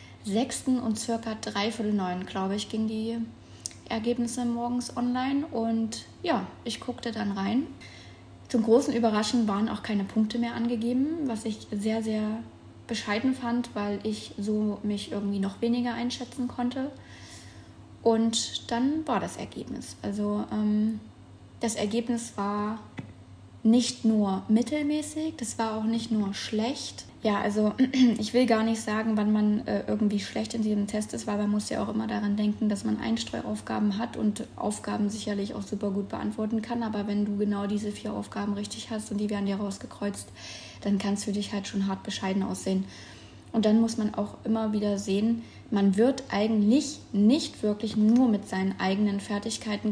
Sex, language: female, German